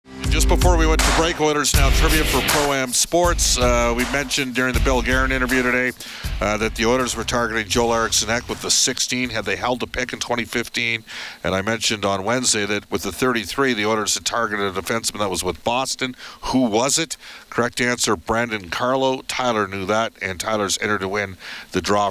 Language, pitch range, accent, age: English, 105-130 Hz, American, 50-69